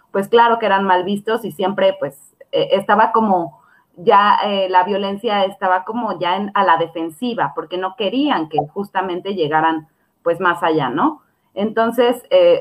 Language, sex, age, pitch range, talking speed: Spanish, female, 30-49, 180-225 Hz, 165 wpm